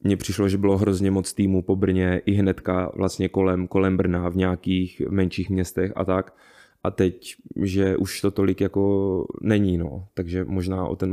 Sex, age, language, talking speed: male, 20-39, Czech, 185 wpm